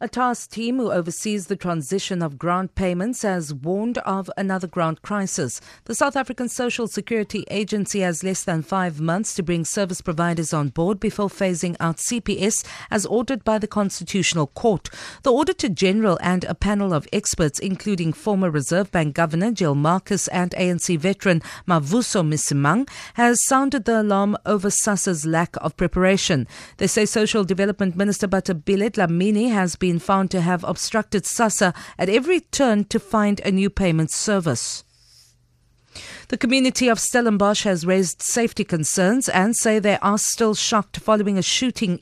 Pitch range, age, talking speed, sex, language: 175-220 Hz, 50-69, 160 wpm, female, English